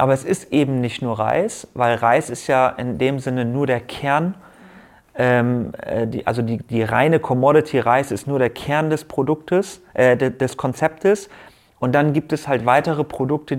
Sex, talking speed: male, 180 wpm